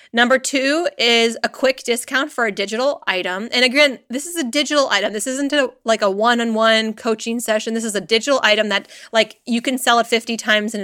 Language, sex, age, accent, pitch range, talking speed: English, female, 30-49, American, 210-265 Hz, 210 wpm